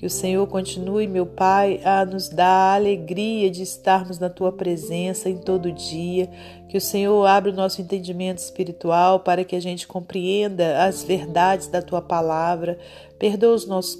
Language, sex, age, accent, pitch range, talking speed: Portuguese, female, 40-59, Brazilian, 175-200 Hz, 170 wpm